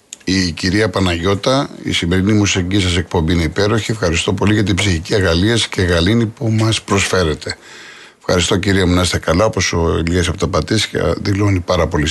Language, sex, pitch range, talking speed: Greek, male, 90-115 Hz, 175 wpm